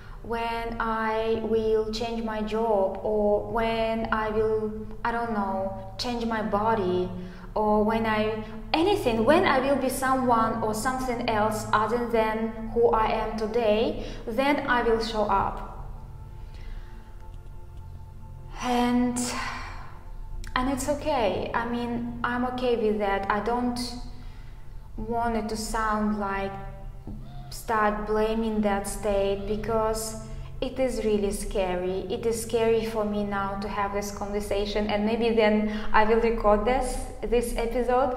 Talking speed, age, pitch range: 130 wpm, 20-39, 190-230 Hz